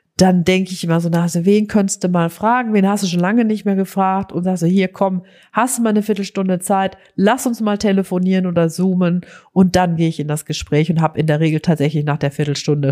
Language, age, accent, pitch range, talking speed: German, 40-59, German, 180-235 Hz, 240 wpm